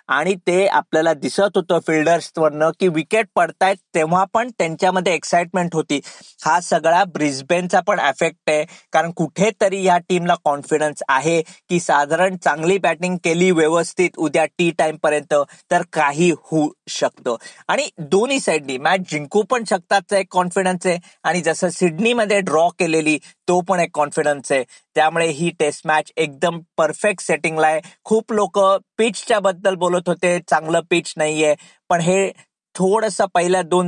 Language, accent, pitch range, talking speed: Marathi, native, 150-180 Hz, 145 wpm